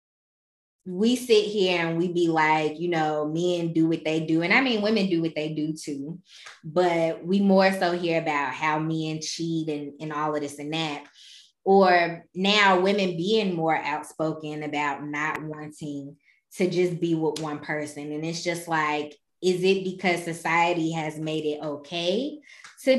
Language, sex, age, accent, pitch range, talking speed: English, female, 20-39, American, 155-190 Hz, 175 wpm